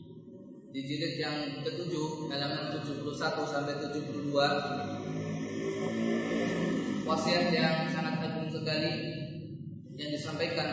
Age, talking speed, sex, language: 20-39, 85 wpm, male, Malay